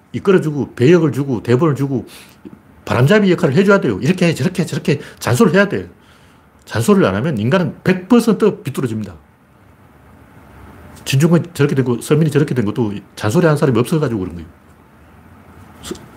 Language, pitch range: Korean, 95-145 Hz